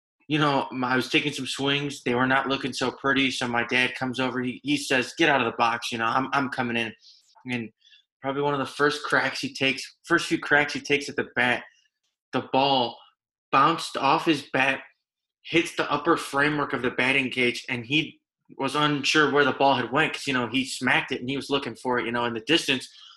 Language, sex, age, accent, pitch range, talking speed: English, male, 20-39, American, 120-140 Hz, 230 wpm